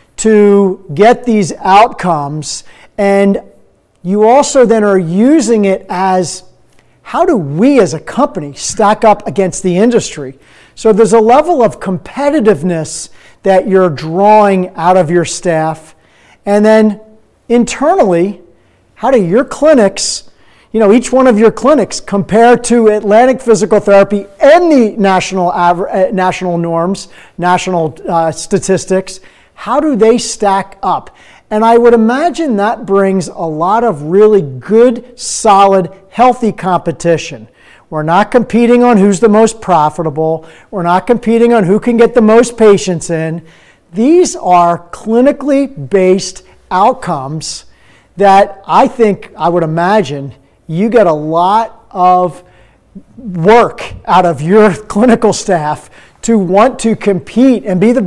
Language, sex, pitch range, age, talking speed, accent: English, male, 175-230 Hz, 40-59, 135 wpm, American